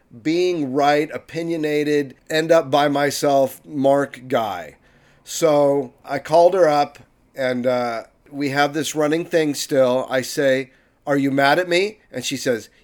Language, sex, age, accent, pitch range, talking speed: English, male, 40-59, American, 135-160 Hz, 150 wpm